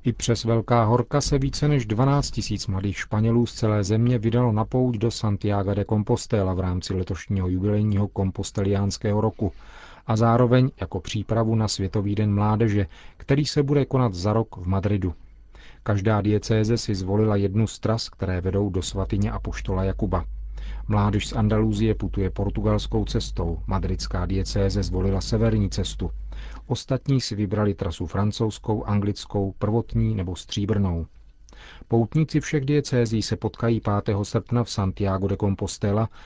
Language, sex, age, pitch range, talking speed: Czech, male, 40-59, 95-115 Hz, 145 wpm